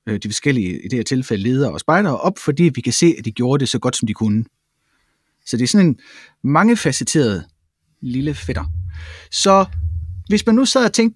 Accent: native